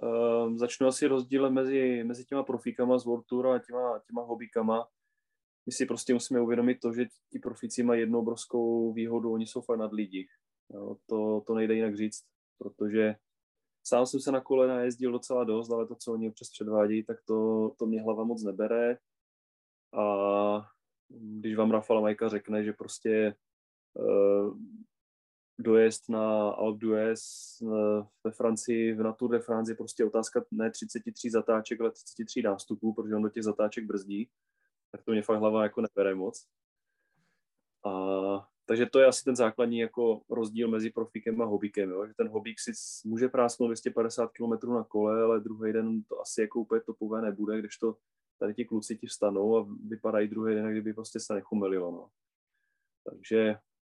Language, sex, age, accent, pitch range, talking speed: Czech, male, 20-39, native, 105-120 Hz, 165 wpm